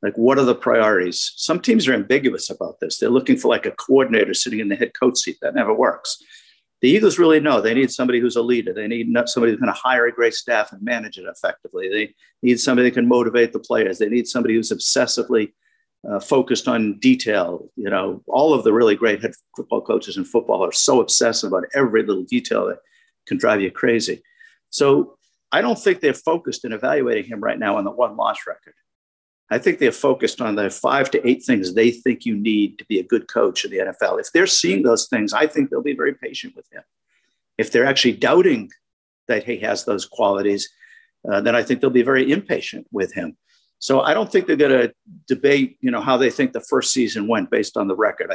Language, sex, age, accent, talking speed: English, male, 50-69, American, 225 wpm